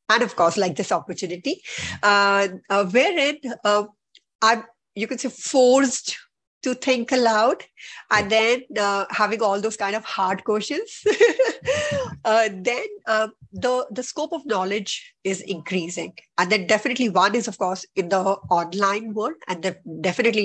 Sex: female